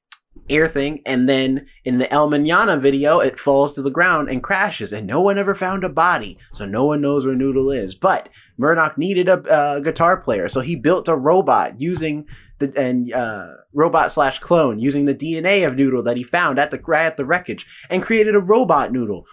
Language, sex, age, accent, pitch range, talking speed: English, male, 20-39, American, 110-165 Hz, 210 wpm